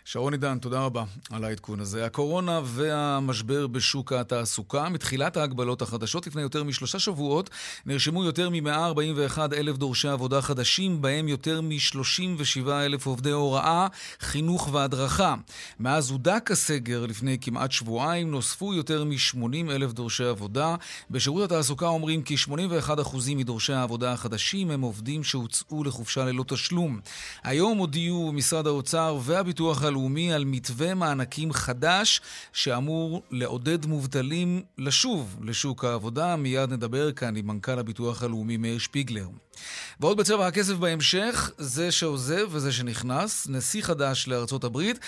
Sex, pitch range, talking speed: male, 130-160 Hz, 125 wpm